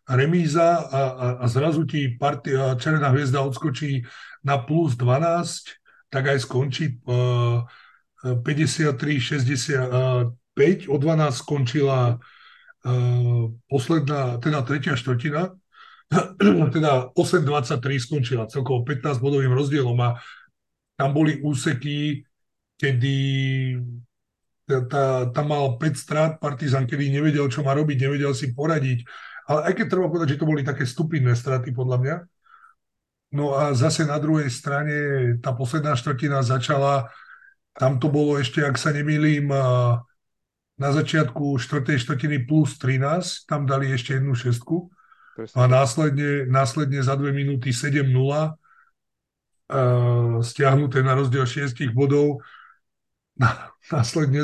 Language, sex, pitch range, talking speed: Slovak, male, 130-150 Hz, 115 wpm